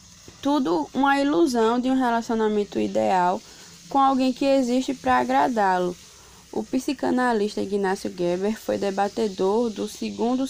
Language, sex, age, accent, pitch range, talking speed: Portuguese, female, 20-39, Brazilian, 200-245 Hz, 120 wpm